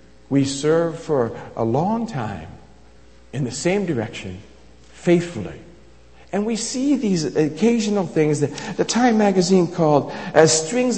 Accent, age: American, 50-69